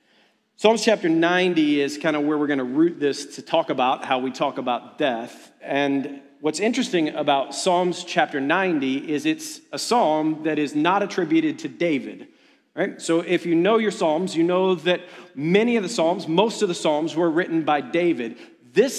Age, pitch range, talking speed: 40-59, 165-215 Hz, 190 wpm